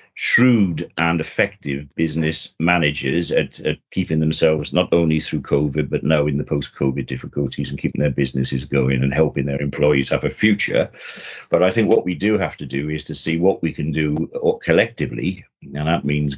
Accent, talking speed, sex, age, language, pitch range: British, 185 wpm, male, 60-79, English, 70-85 Hz